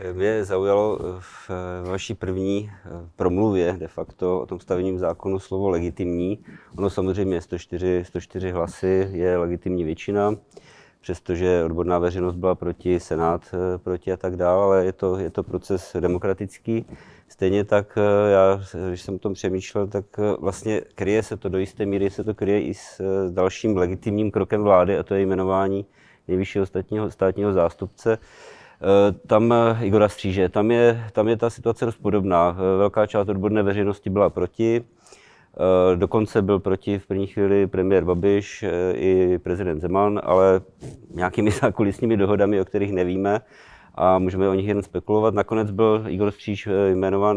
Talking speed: 145 wpm